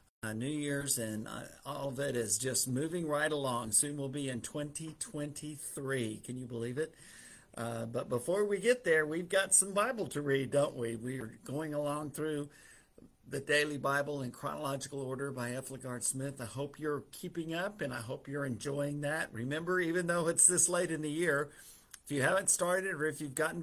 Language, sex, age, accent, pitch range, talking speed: English, male, 50-69, American, 120-155 Hz, 200 wpm